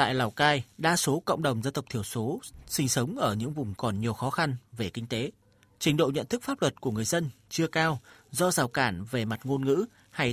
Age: 30-49